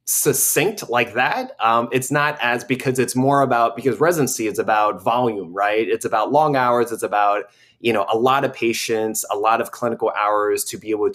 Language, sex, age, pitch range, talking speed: English, male, 20-39, 105-150 Hz, 200 wpm